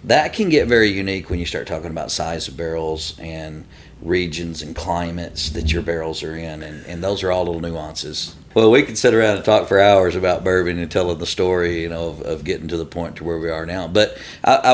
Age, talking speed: 50-69, 240 wpm